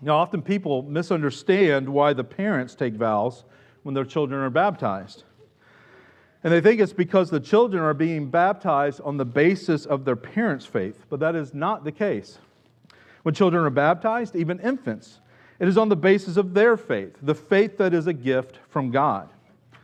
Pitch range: 135-195 Hz